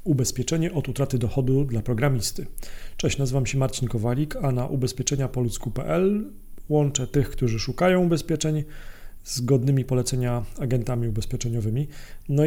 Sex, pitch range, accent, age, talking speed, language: male, 125-150 Hz, native, 40-59, 120 wpm, Polish